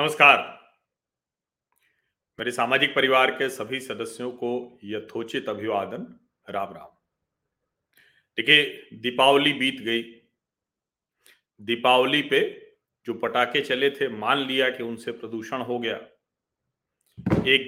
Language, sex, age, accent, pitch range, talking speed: Hindi, male, 40-59, native, 115-165 Hz, 110 wpm